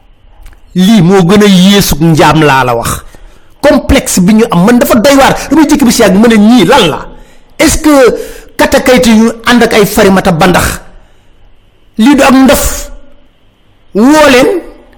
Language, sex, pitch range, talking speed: French, male, 185-270 Hz, 40 wpm